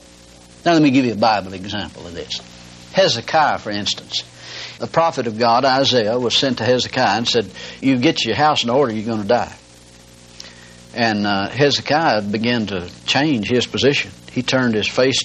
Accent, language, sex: American, English, male